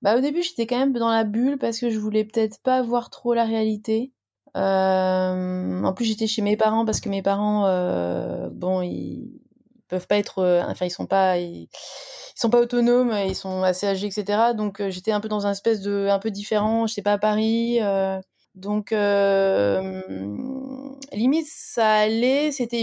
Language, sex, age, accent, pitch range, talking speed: French, female, 20-39, French, 190-230 Hz, 190 wpm